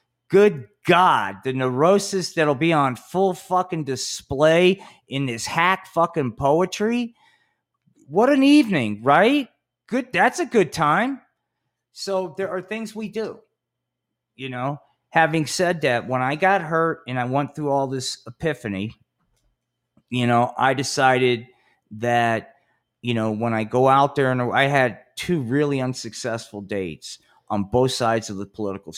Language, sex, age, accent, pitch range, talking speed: English, male, 40-59, American, 110-140 Hz, 145 wpm